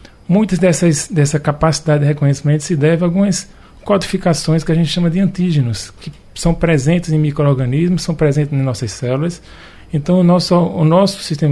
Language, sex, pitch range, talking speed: Portuguese, male, 140-170 Hz, 170 wpm